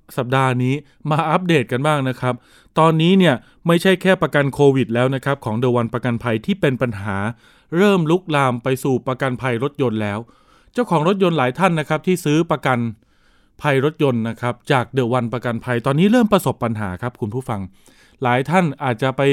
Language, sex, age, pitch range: Thai, male, 20-39, 125-155 Hz